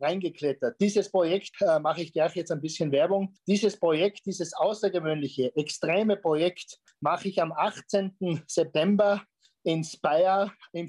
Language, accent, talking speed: German, German, 140 wpm